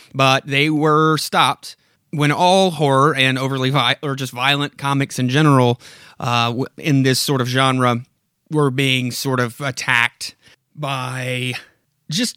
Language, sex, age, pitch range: English, male, 30-49, 130-160 Hz